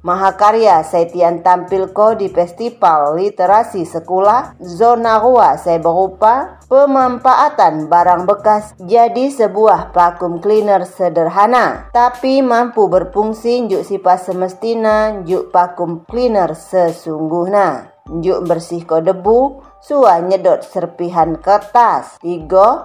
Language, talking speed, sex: Indonesian, 105 wpm, female